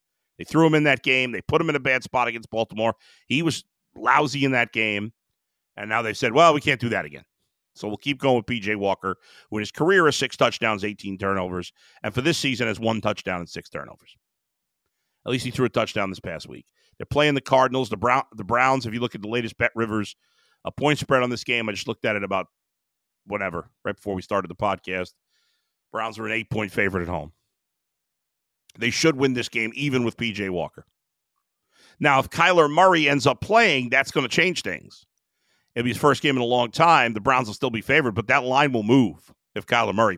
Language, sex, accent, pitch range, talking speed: English, male, American, 105-135 Hz, 225 wpm